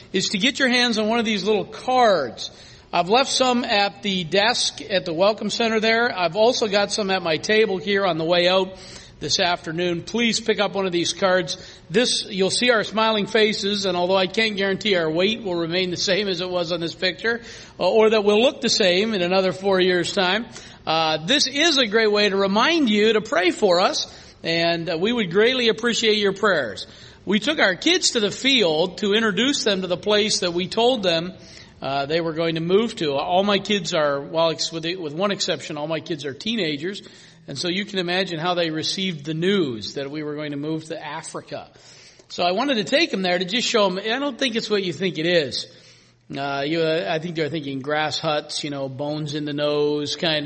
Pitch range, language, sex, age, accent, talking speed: 165-220 Hz, English, male, 50-69, American, 225 wpm